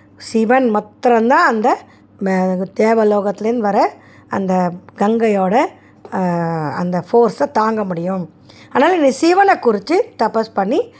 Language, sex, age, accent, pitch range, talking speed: Tamil, female, 20-39, native, 195-270 Hz, 95 wpm